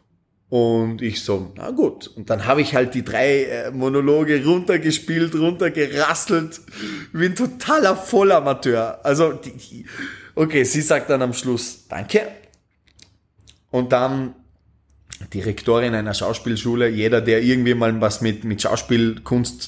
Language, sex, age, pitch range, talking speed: German, male, 30-49, 115-185 Hz, 130 wpm